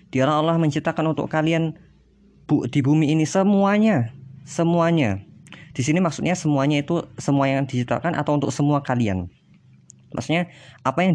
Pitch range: 120-155 Hz